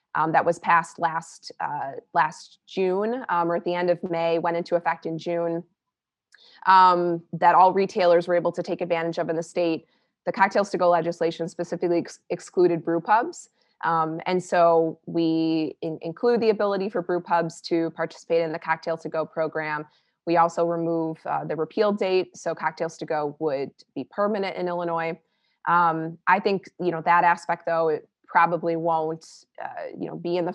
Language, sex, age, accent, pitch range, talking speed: English, female, 20-39, American, 165-175 Hz, 185 wpm